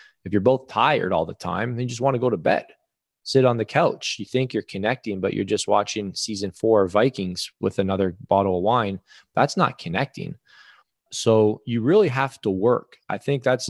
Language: English